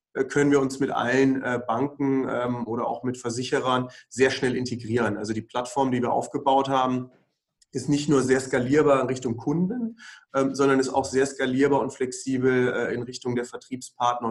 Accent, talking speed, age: German, 165 wpm, 30-49